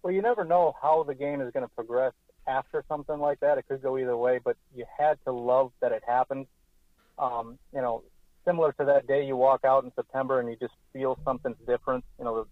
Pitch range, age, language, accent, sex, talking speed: 115-135 Hz, 40-59, English, American, male, 235 wpm